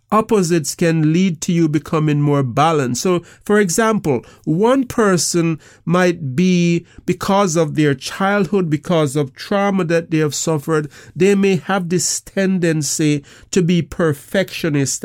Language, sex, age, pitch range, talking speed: English, male, 50-69, 150-185 Hz, 135 wpm